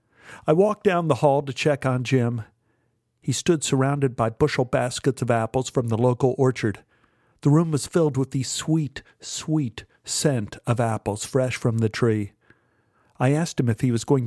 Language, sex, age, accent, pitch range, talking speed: English, male, 50-69, American, 115-145 Hz, 180 wpm